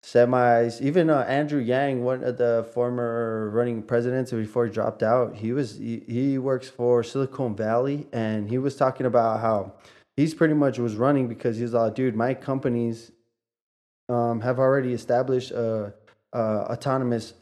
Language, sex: English, male